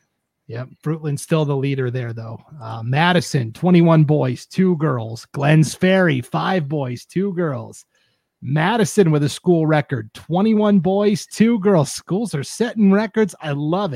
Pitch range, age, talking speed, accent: 130-165 Hz, 30-49, 145 wpm, American